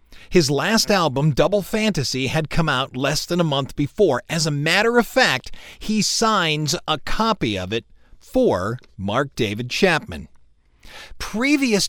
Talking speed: 145 wpm